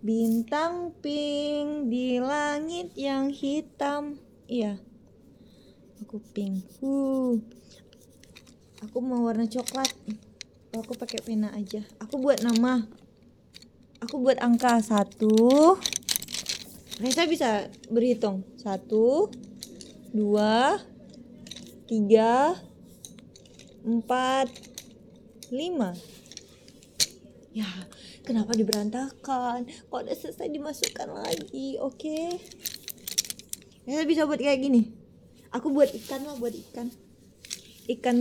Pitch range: 215-275 Hz